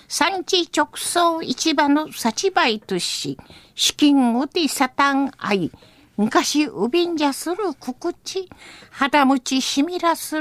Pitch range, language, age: 225-310 Hz, Japanese, 50-69